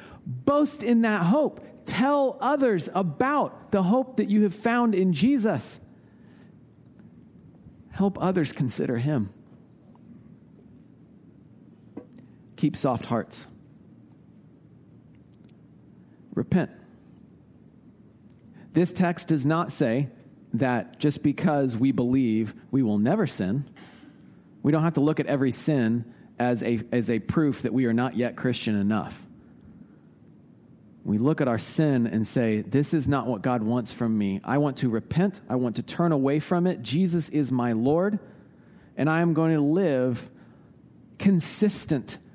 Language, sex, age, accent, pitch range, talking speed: English, male, 40-59, American, 120-175 Hz, 130 wpm